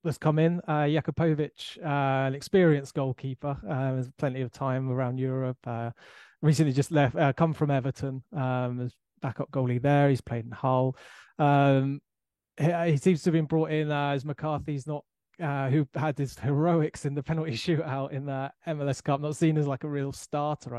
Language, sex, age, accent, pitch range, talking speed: English, male, 20-39, British, 130-145 Hz, 190 wpm